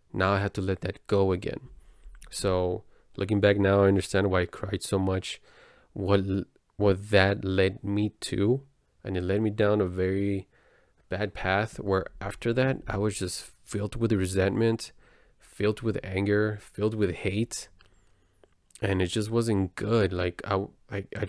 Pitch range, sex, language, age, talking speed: 95-105 Hz, male, English, 20-39, 165 wpm